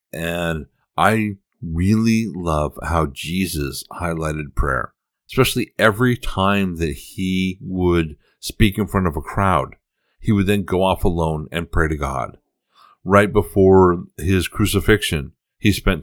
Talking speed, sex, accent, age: 135 wpm, male, American, 50-69